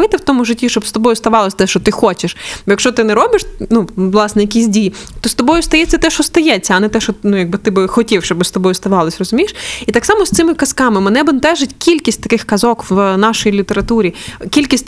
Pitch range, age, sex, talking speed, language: 205-265 Hz, 20-39, female, 225 wpm, Ukrainian